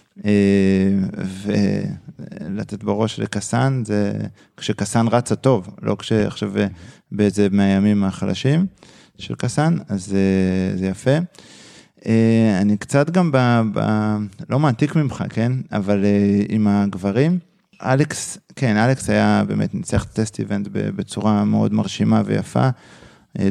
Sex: male